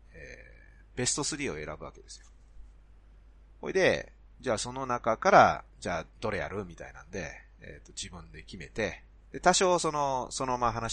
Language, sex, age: Japanese, male, 30-49